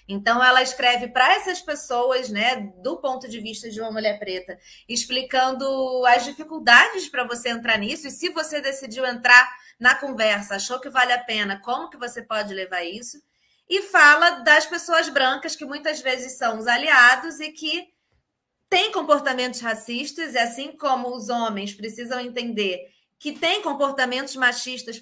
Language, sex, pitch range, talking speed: Portuguese, female, 240-300 Hz, 160 wpm